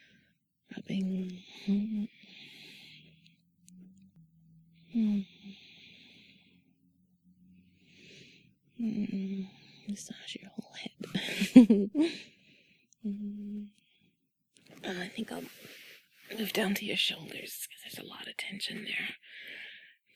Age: 20-39